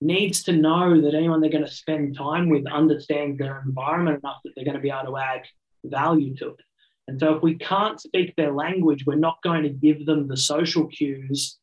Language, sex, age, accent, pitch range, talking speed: English, male, 30-49, Australian, 140-165 Hz, 220 wpm